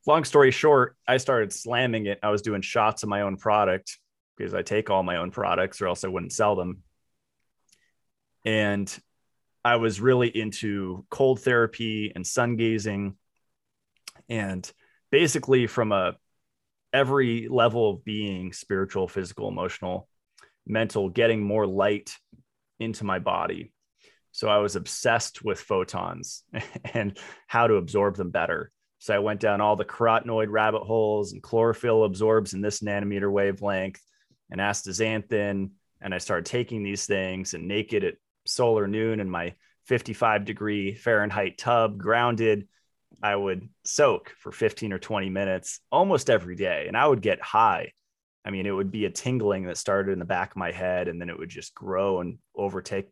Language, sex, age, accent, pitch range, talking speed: English, male, 30-49, American, 95-115 Hz, 160 wpm